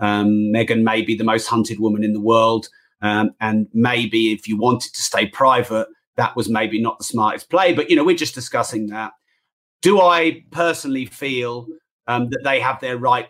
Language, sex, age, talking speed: English, male, 30-49, 200 wpm